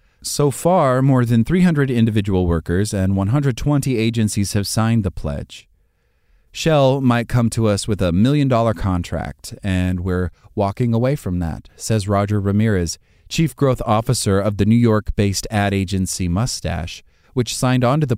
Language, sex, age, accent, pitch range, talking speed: English, male, 30-49, American, 90-120 Hz, 150 wpm